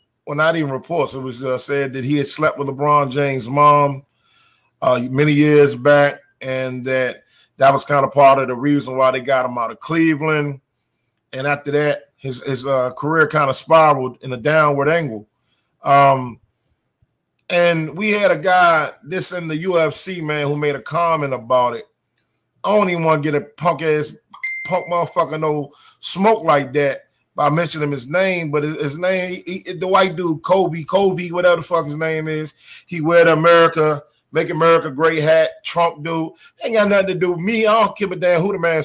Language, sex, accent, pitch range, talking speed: English, male, American, 140-175 Hz, 195 wpm